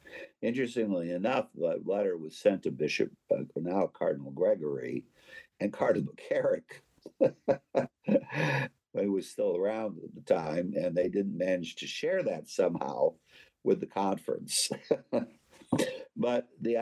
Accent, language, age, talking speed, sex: American, English, 60-79, 125 wpm, male